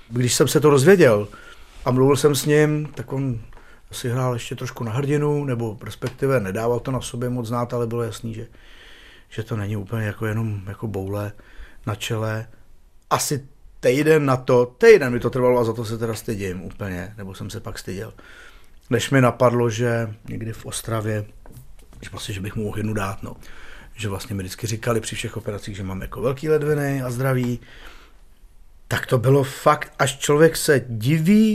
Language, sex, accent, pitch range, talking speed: Czech, male, native, 110-135 Hz, 185 wpm